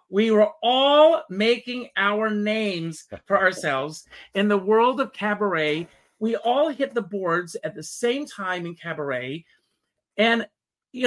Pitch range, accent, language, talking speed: 160-220 Hz, American, English, 140 wpm